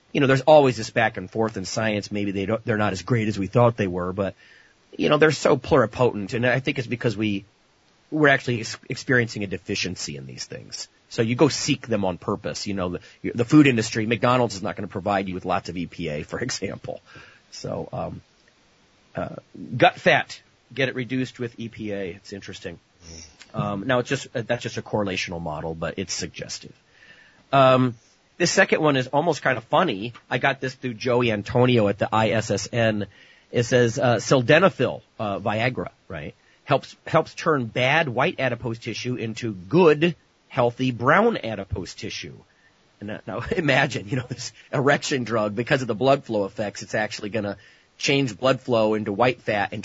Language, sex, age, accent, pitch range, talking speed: English, male, 30-49, American, 100-130 Hz, 190 wpm